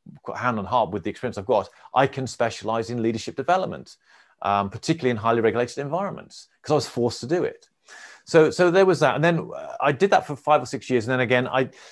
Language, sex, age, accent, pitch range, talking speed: English, male, 30-49, British, 110-135 Hz, 230 wpm